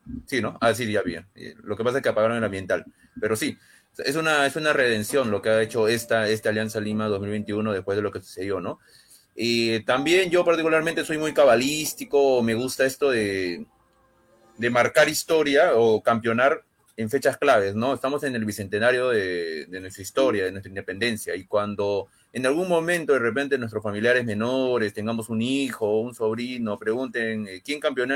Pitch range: 110-145 Hz